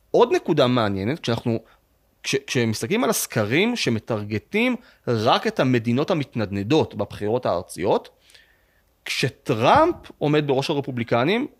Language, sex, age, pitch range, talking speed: English, male, 30-49, 110-150 Hz, 100 wpm